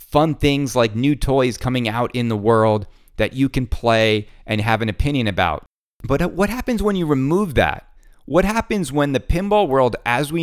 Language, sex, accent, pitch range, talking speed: English, male, American, 110-155 Hz, 195 wpm